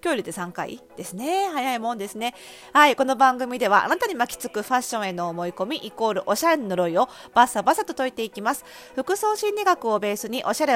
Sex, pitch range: female, 195-275 Hz